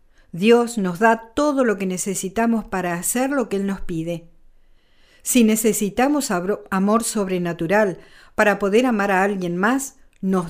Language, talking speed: Spanish, 145 wpm